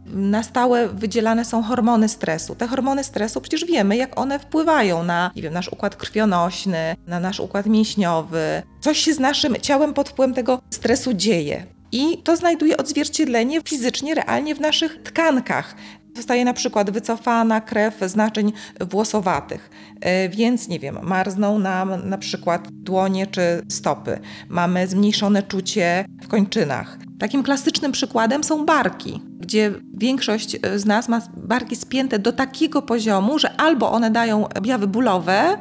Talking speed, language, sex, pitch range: 150 wpm, Polish, female, 205-280 Hz